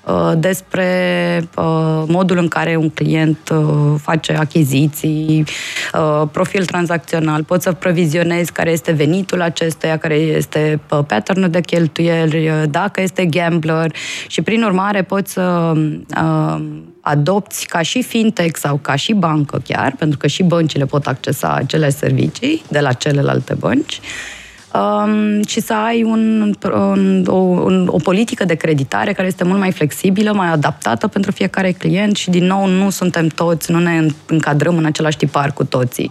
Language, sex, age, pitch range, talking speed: Romanian, female, 20-39, 155-190 Hz, 145 wpm